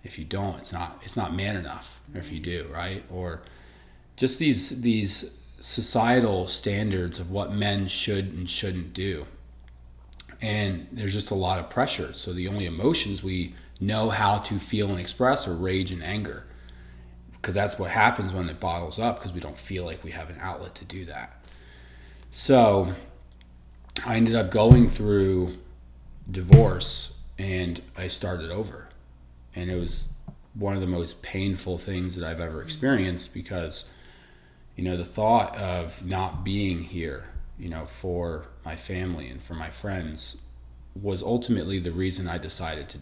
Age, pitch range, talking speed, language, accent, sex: 30-49, 80-100 Hz, 160 wpm, English, American, male